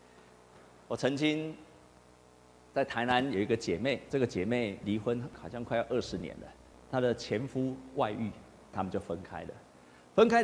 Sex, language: male, Chinese